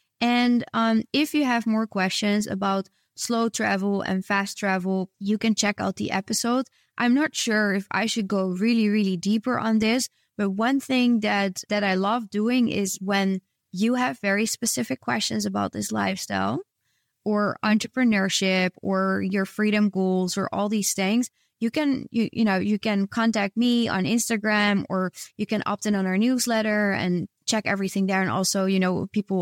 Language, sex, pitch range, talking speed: English, female, 190-225 Hz, 175 wpm